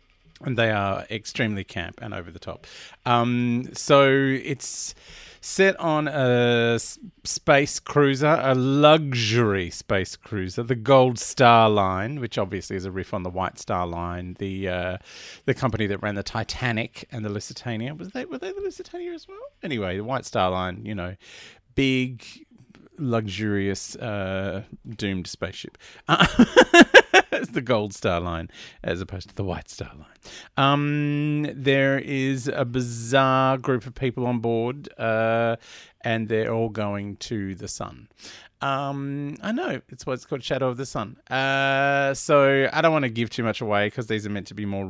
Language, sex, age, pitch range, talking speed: English, male, 40-59, 100-135 Hz, 165 wpm